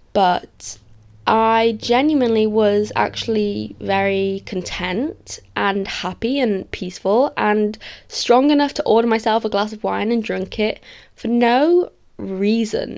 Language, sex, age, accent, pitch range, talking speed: English, female, 10-29, British, 185-235 Hz, 125 wpm